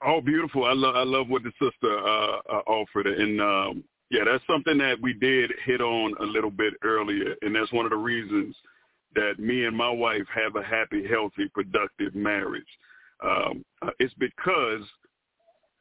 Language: English